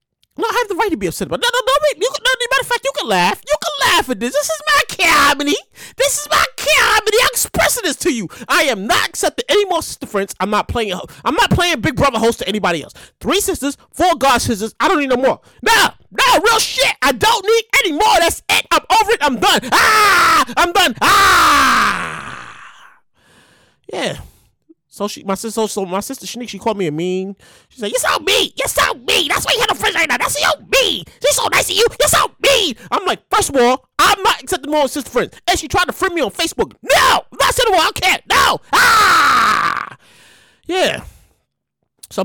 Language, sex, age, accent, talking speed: English, male, 30-49, American, 225 wpm